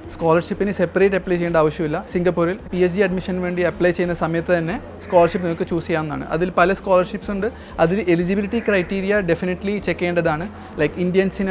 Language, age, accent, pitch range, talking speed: Malayalam, 30-49, native, 170-195 Hz, 160 wpm